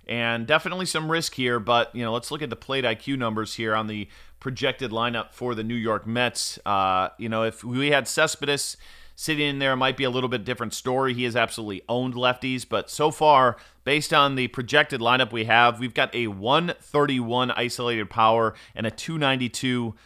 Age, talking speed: 30-49, 200 wpm